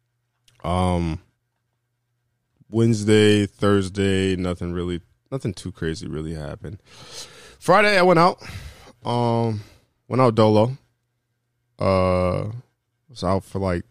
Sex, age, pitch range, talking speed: male, 20-39, 95-120 Hz, 105 wpm